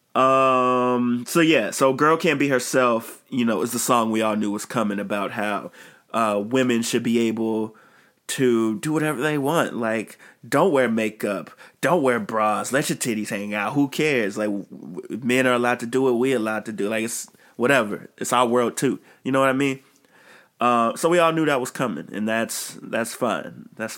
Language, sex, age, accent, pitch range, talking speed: English, male, 20-39, American, 110-130 Hz, 200 wpm